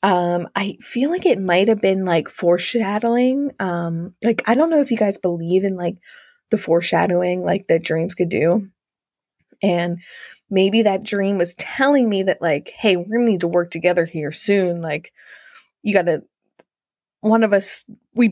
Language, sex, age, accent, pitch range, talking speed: English, female, 20-39, American, 175-215 Hz, 165 wpm